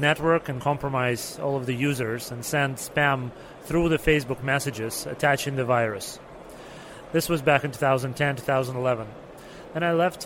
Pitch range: 130-150 Hz